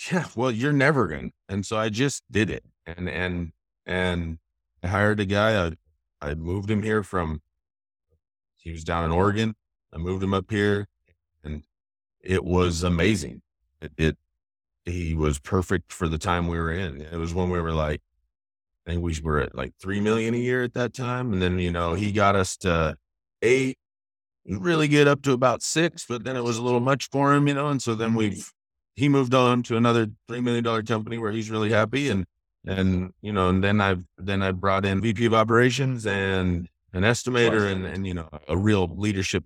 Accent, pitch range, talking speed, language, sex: American, 85-110 Hz, 205 wpm, English, male